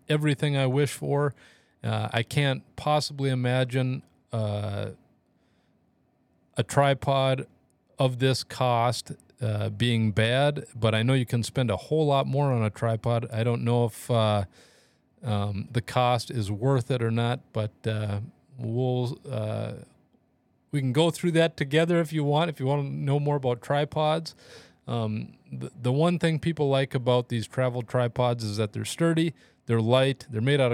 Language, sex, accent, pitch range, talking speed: English, male, American, 115-145 Hz, 165 wpm